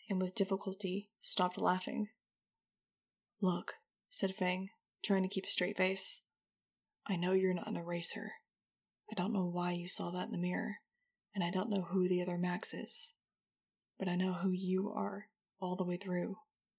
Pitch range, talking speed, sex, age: 185-215 Hz, 175 wpm, female, 20-39